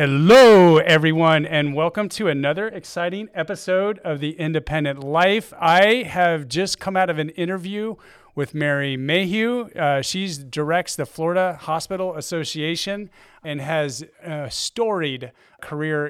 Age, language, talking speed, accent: 30-49, English, 130 wpm, American